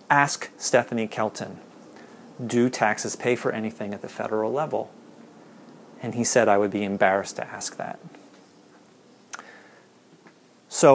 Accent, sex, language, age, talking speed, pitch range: American, male, English, 30-49, 125 wpm, 110-140 Hz